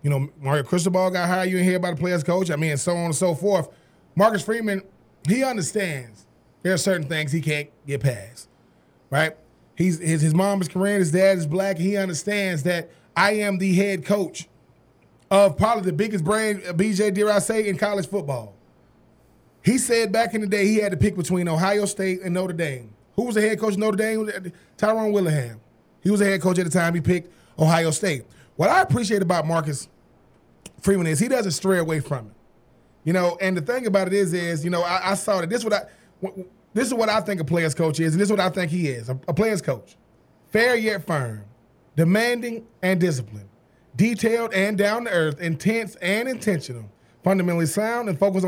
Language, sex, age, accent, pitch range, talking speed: English, male, 20-39, American, 160-205 Hz, 210 wpm